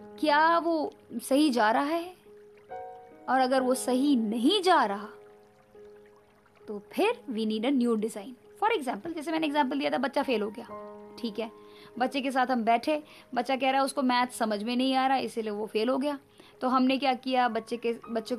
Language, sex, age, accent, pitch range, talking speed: Hindi, female, 20-39, native, 215-275 Hz, 200 wpm